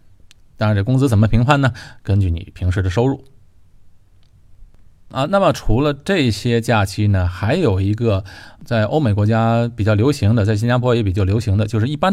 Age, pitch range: 20-39, 95-120 Hz